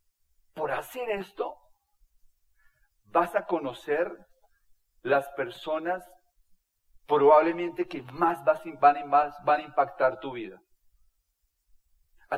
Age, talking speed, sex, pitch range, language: 40-59, 80 wpm, male, 145-205 Hz, Spanish